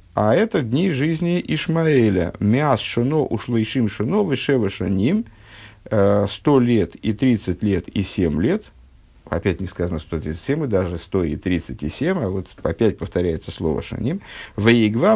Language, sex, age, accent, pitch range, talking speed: Russian, male, 50-69, native, 95-145 Hz, 155 wpm